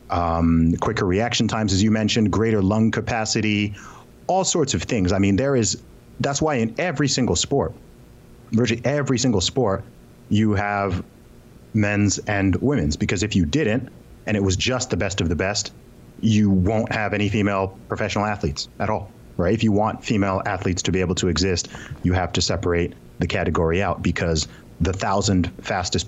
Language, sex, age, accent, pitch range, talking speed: English, male, 30-49, American, 90-110 Hz, 175 wpm